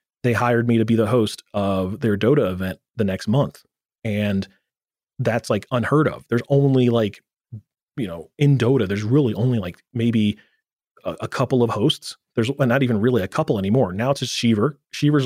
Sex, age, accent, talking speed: male, 30-49, American, 190 wpm